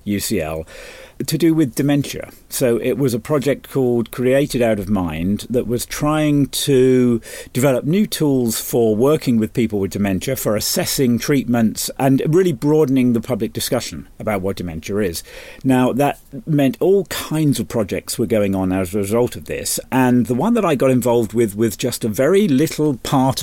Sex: male